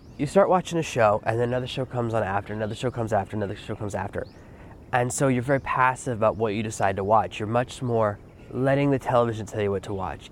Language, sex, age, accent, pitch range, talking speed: English, male, 20-39, American, 105-130 Hz, 245 wpm